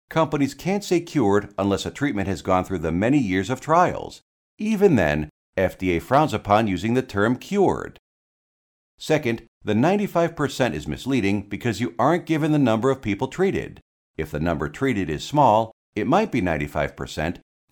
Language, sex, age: English, male, 50-69